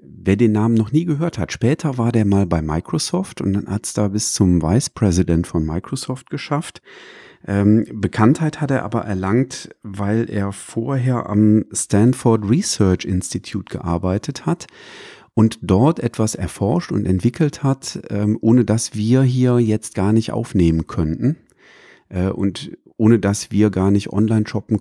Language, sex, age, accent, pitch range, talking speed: German, male, 40-59, German, 95-120 Hz, 155 wpm